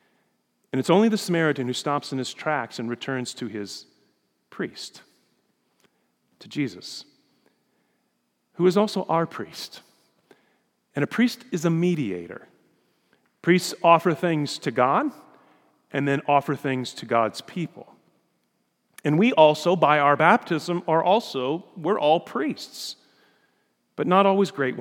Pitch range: 130-180 Hz